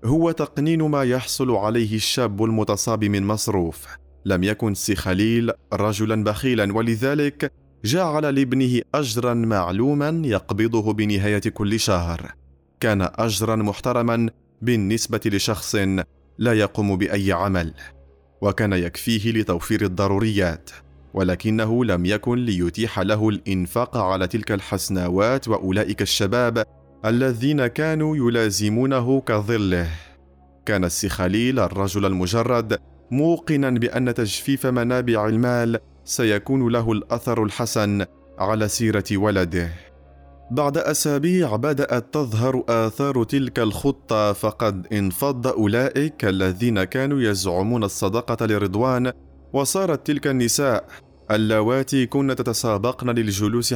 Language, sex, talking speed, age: Arabic, male, 100 wpm, 30-49